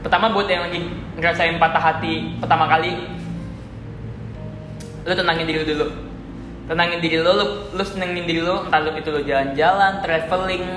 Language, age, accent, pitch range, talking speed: Indonesian, 10-29, native, 155-190 Hz, 150 wpm